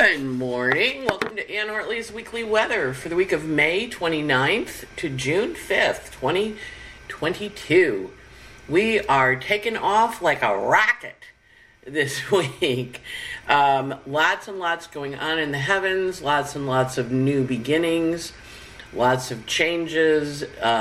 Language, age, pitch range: English, 50-69, 125-170 Hz